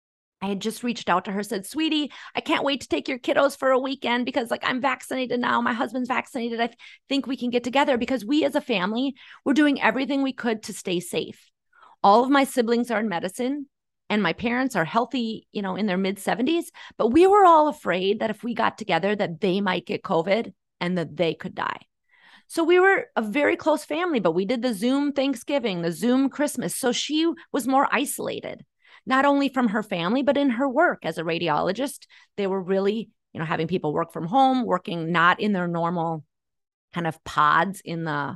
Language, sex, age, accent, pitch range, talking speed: English, female, 30-49, American, 200-275 Hz, 215 wpm